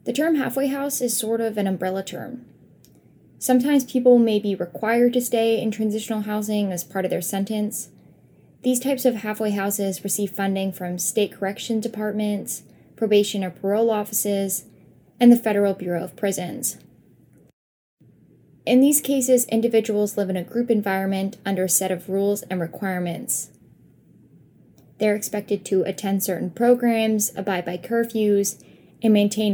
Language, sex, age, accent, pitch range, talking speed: English, female, 10-29, American, 195-240 Hz, 150 wpm